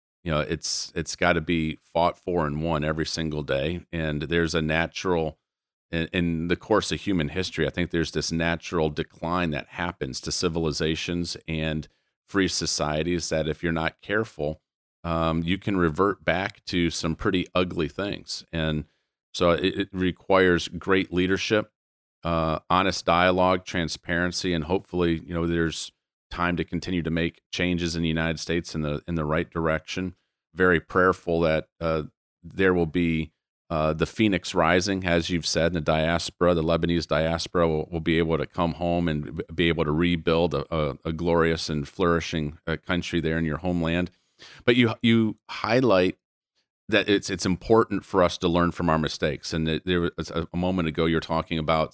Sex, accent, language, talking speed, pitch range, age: male, American, English, 175 wpm, 80-90 Hz, 40-59